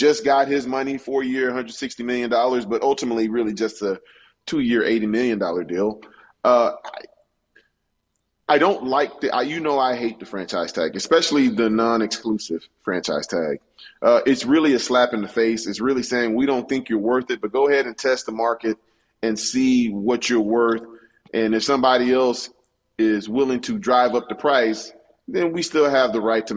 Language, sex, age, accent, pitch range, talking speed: English, male, 30-49, American, 110-135 Hz, 185 wpm